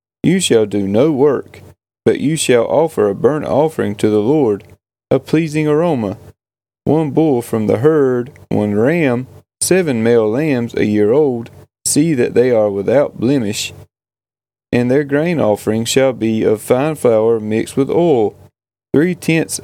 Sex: male